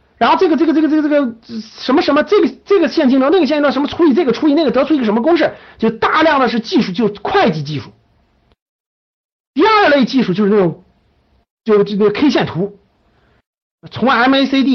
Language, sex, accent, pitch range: Chinese, male, native, 200-295 Hz